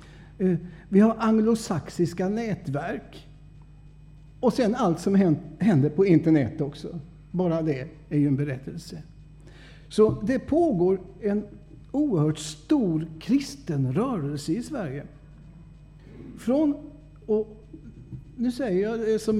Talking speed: 110 wpm